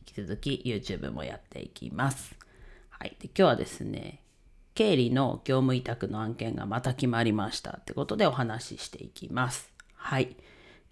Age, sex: 40-59, female